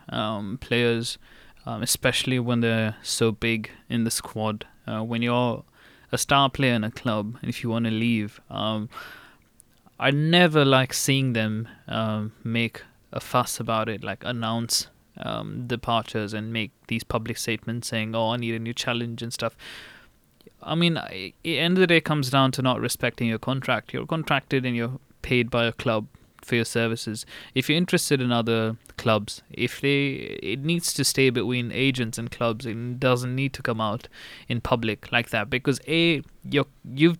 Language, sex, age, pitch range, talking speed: English, male, 20-39, 115-140 Hz, 180 wpm